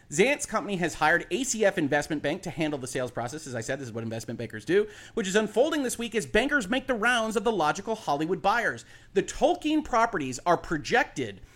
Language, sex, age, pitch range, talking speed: English, male, 30-49, 130-200 Hz, 215 wpm